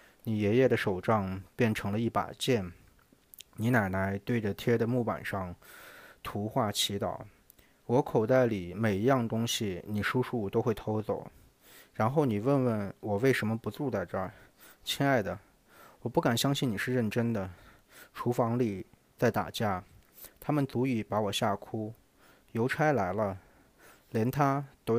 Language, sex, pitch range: Chinese, male, 100-125 Hz